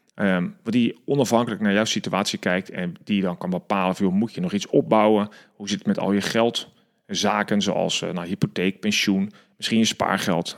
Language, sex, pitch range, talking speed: Dutch, male, 105-140 Hz, 195 wpm